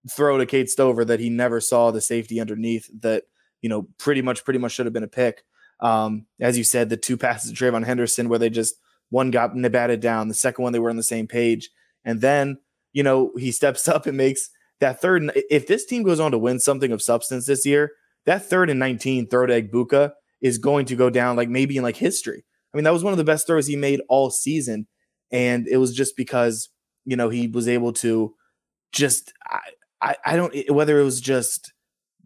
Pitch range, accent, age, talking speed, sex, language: 120-145 Hz, American, 20-39, 225 wpm, male, English